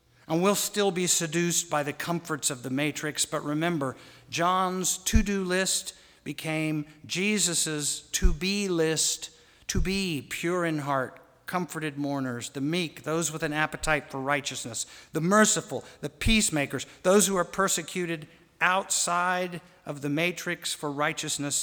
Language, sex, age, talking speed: English, male, 50-69, 135 wpm